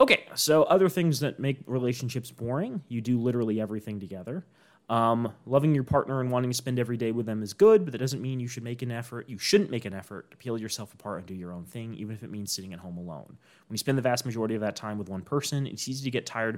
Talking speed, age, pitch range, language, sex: 270 wpm, 30-49, 100-130 Hz, English, male